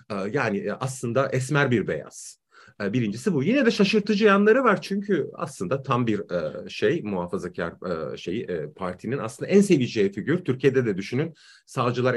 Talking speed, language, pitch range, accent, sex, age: 140 wpm, Turkish, 125-205 Hz, native, male, 40-59